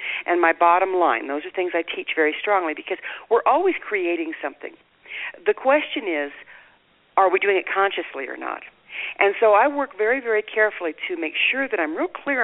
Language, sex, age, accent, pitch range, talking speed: English, female, 50-69, American, 160-230 Hz, 195 wpm